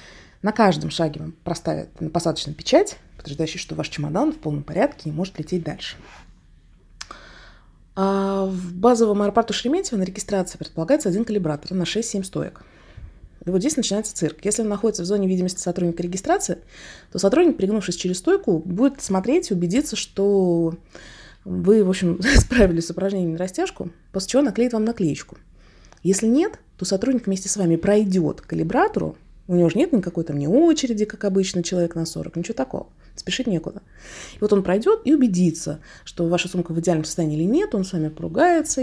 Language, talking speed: Russian, 170 wpm